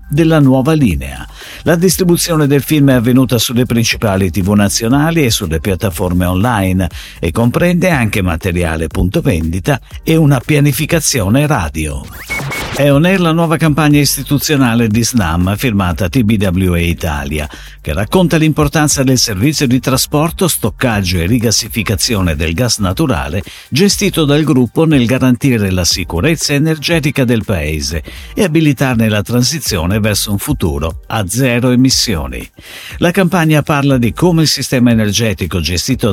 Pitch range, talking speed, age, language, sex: 95-150 Hz, 135 wpm, 50-69, Italian, male